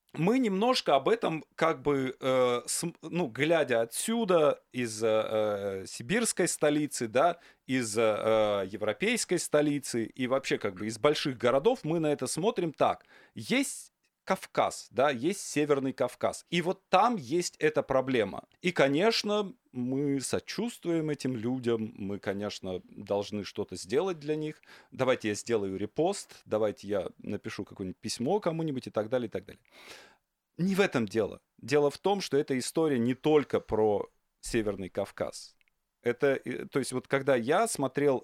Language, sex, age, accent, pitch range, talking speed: Russian, male, 30-49, native, 115-165 Hz, 145 wpm